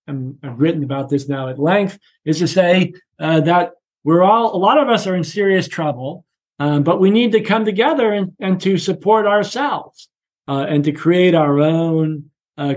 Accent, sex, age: American, male, 40-59